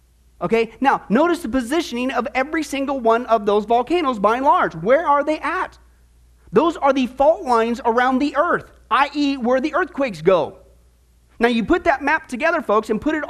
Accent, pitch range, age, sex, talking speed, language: American, 220-280 Hz, 40-59, male, 190 wpm, English